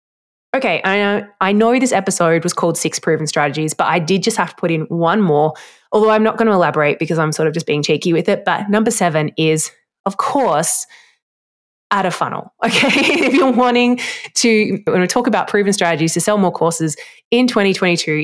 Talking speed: 195 wpm